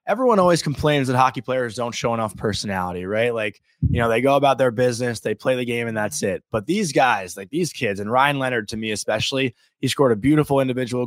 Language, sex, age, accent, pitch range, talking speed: English, male, 20-39, American, 105-140 Hz, 235 wpm